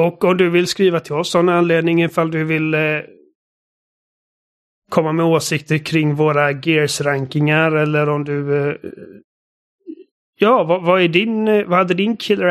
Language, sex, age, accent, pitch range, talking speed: Swedish, male, 30-49, native, 140-160 Hz, 155 wpm